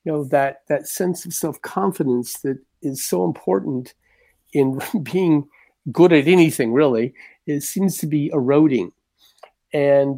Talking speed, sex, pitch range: 135 wpm, male, 125-160 Hz